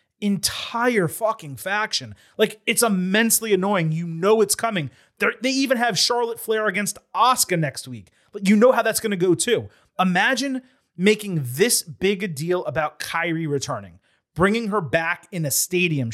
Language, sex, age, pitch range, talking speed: English, male, 30-49, 150-215 Hz, 165 wpm